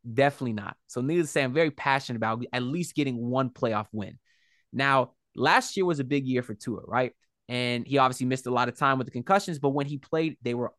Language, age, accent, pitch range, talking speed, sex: English, 20-39, American, 120-150 Hz, 240 wpm, male